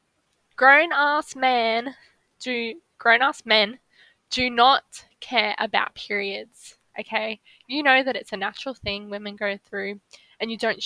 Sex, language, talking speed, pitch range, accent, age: female, English, 115 wpm, 215-265 Hz, Australian, 10-29